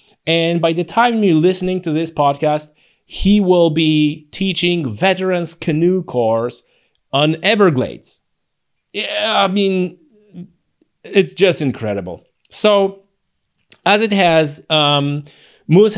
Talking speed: 115 wpm